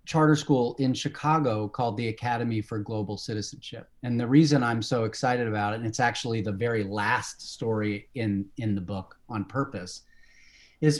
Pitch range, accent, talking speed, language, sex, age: 115-145 Hz, American, 175 wpm, English, male, 30-49